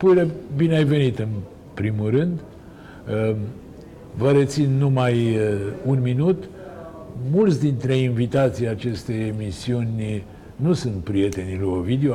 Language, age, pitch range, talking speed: Romanian, 60-79, 105-140 Hz, 110 wpm